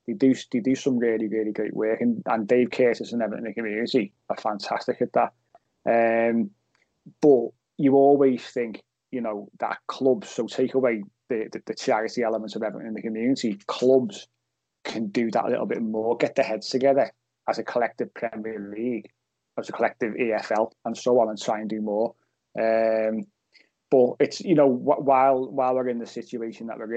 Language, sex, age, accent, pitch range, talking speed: English, male, 20-39, British, 110-130 Hz, 195 wpm